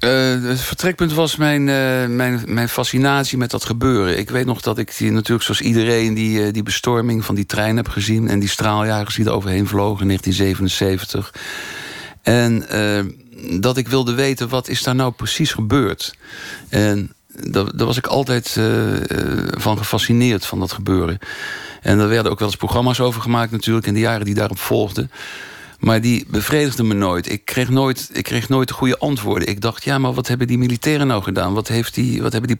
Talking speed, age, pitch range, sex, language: 195 wpm, 60-79, 100-125 Hz, male, Dutch